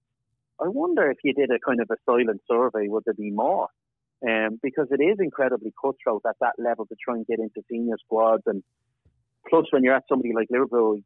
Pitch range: 115-130 Hz